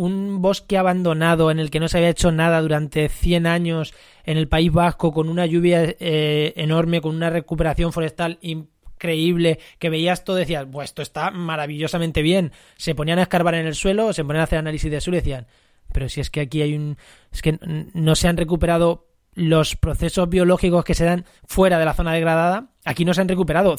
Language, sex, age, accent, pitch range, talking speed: Spanish, male, 20-39, Spanish, 155-180 Hz, 210 wpm